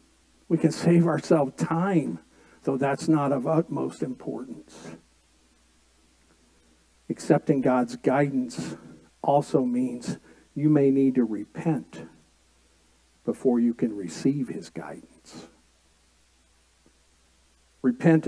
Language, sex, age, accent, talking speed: English, male, 50-69, American, 90 wpm